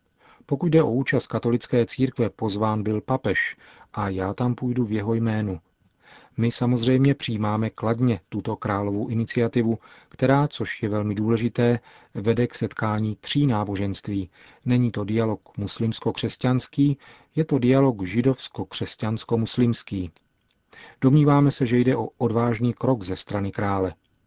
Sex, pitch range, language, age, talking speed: male, 110-125 Hz, Czech, 40-59, 125 wpm